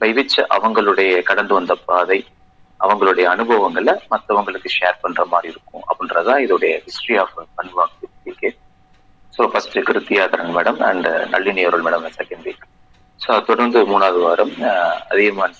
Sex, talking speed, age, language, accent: male, 125 wpm, 30-49, Tamil, native